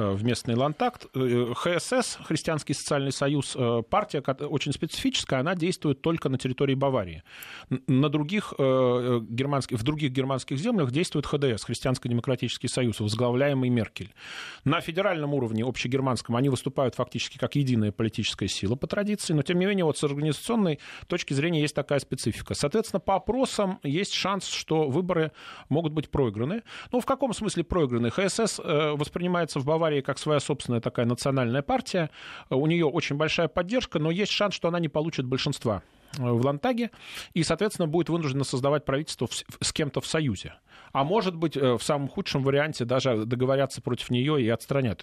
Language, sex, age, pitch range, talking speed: Russian, male, 30-49, 125-170 Hz, 150 wpm